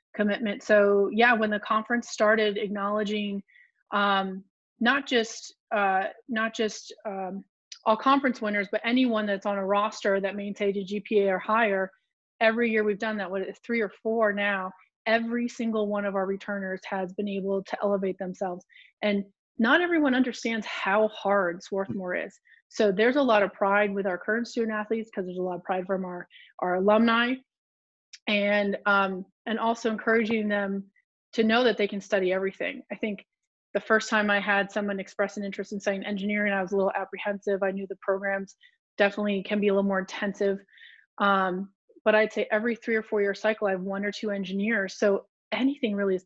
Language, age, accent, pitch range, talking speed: English, 30-49, American, 195-225 Hz, 190 wpm